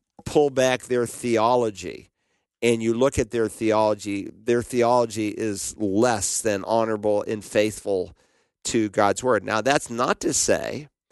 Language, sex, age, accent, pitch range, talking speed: English, male, 50-69, American, 110-125 Hz, 140 wpm